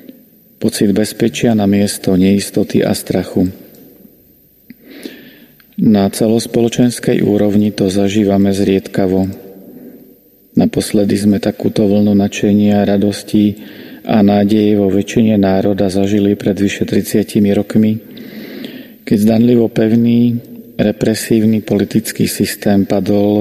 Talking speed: 90 wpm